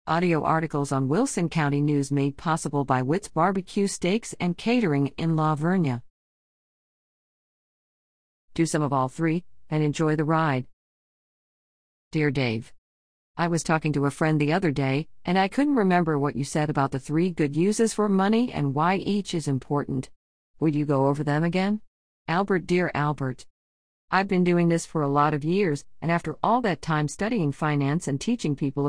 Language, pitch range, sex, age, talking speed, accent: English, 140-180 Hz, female, 50-69, 175 wpm, American